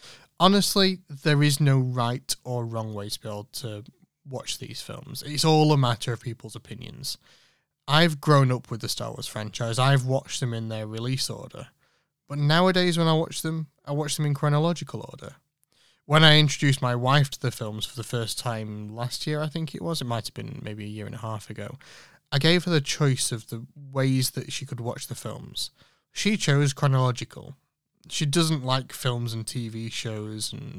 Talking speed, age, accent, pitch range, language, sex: 200 wpm, 30-49, British, 115-150 Hz, English, male